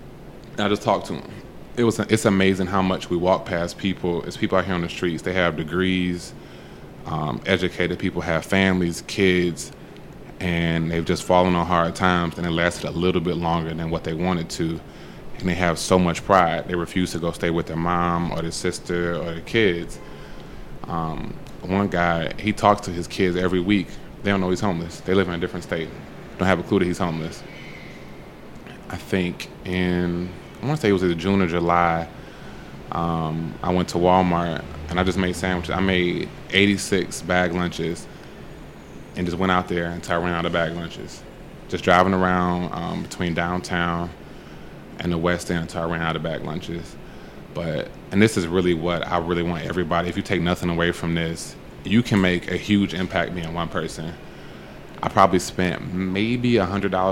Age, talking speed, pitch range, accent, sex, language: 20-39, 195 wpm, 85-95 Hz, American, male, English